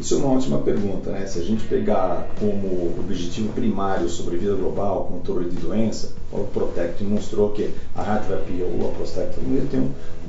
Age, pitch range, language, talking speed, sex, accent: 40-59, 95-120 Hz, Portuguese, 180 wpm, male, Brazilian